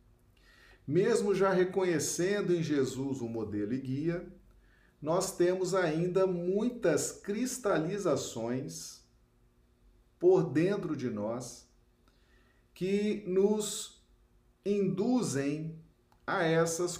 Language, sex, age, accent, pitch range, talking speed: Portuguese, male, 50-69, Brazilian, 110-175 Hz, 80 wpm